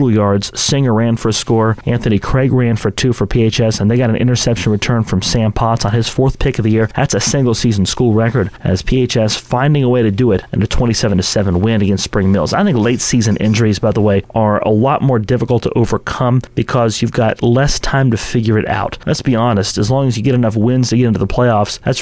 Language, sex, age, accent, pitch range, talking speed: English, male, 30-49, American, 110-130 Hz, 245 wpm